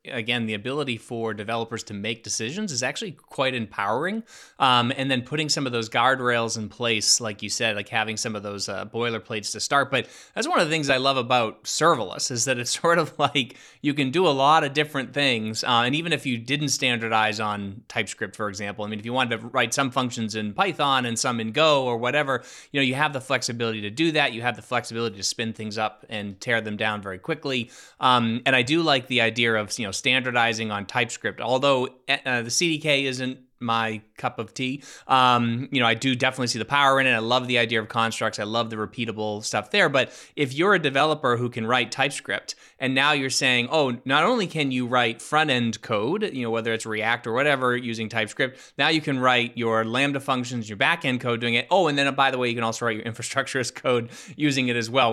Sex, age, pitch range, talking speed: male, 20-39, 115-140 Hz, 235 wpm